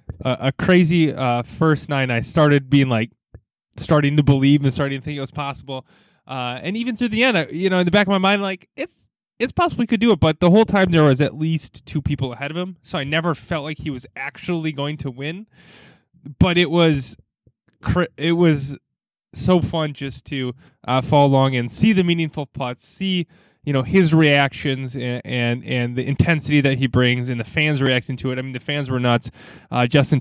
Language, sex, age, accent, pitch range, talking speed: English, male, 20-39, American, 125-155 Hz, 220 wpm